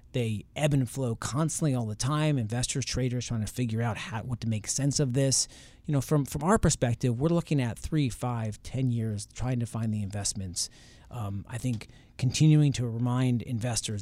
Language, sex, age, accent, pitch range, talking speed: English, male, 30-49, American, 110-135 Hz, 195 wpm